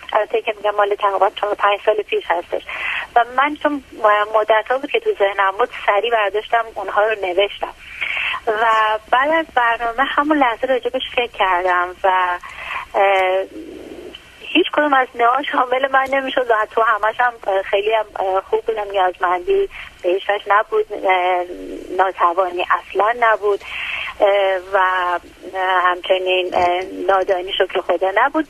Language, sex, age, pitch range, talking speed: Persian, female, 30-49, 195-270 Hz, 130 wpm